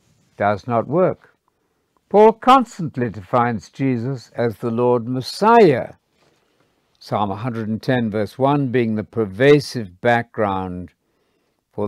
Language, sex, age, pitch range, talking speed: English, male, 60-79, 105-150 Hz, 100 wpm